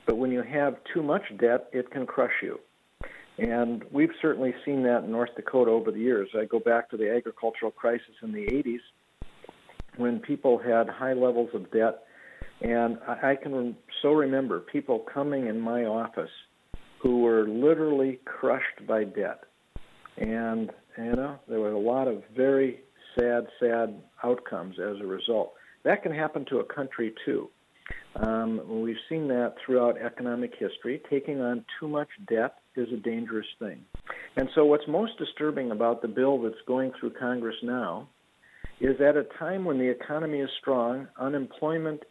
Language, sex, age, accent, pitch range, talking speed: English, male, 50-69, American, 115-140 Hz, 165 wpm